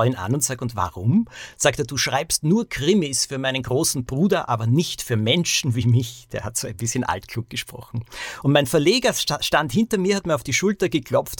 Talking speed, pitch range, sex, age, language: 220 wpm, 120-160 Hz, male, 50-69, German